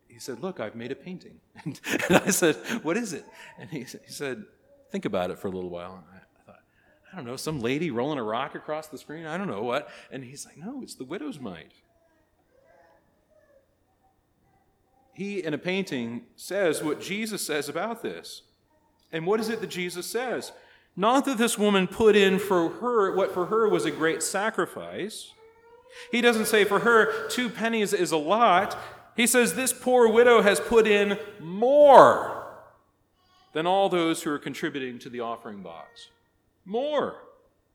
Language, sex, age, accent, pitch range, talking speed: English, male, 40-59, American, 180-245 Hz, 175 wpm